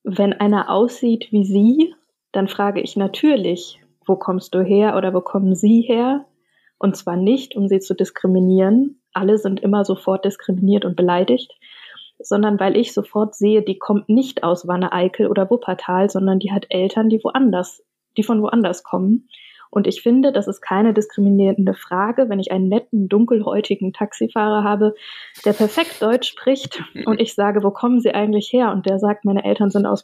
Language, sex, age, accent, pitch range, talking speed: German, female, 20-39, German, 195-235 Hz, 175 wpm